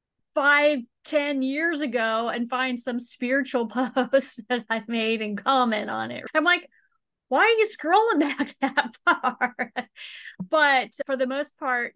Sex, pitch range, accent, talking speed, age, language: female, 210-255 Hz, American, 150 wpm, 30-49, English